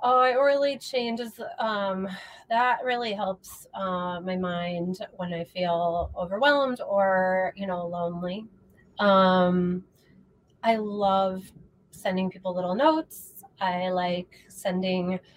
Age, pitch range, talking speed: 30-49, 185-205 Hz, 115 wpm